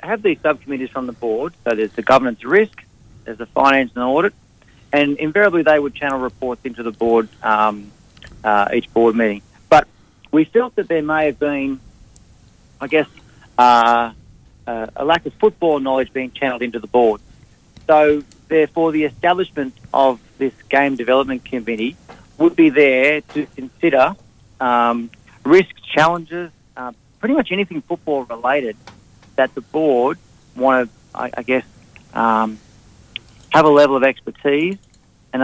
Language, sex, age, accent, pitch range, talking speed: English, male, 40-59, Australian, 115-145 Hz, 150 wpm